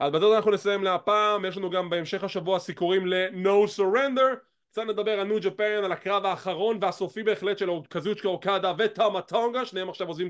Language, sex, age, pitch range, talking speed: English, male, 20-39, 160-210 Hz, 200 wpm